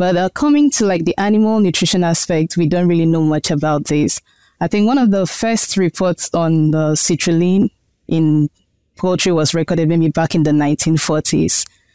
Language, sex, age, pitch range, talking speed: English, female, 20-39, 155-195 Hz, 180 wpm